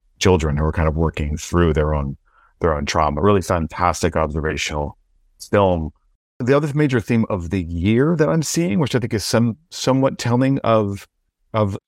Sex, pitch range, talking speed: male, 80-100 Hz, 175 wpm